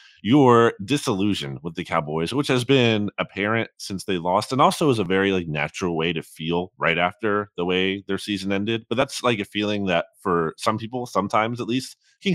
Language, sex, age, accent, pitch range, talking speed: English, male, 20-39, American, 85-115 Hz, 205 wpm